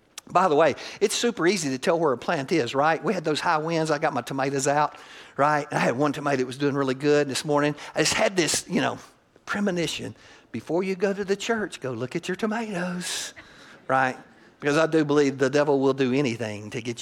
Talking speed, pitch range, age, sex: 230 wpm, 135-190 Hz, 50-69, male